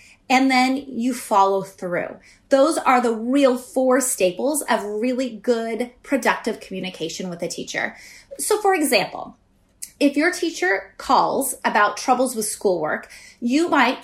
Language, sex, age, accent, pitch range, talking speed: English, female, 30-49, American, 230-295 Hz, 135 wpm